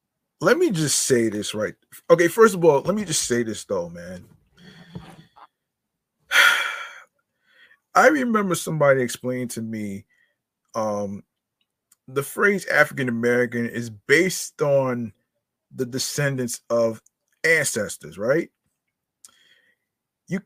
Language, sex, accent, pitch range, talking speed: English, male, American, 120-185 Hz, 110 wpm